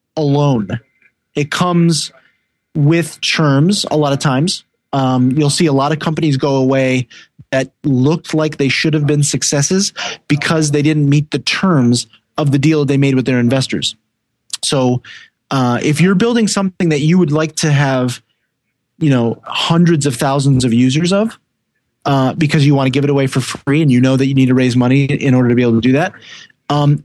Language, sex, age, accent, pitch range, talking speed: English, male, 30-49, American, 130-155 Hz, 195 wpm